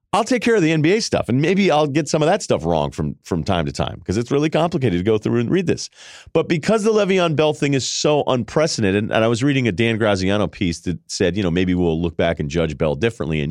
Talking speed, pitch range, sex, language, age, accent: 275 wpm, 100-155 Hz, male, English, 40-59, American